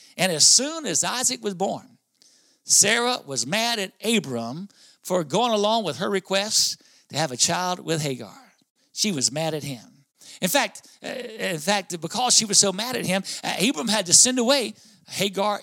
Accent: American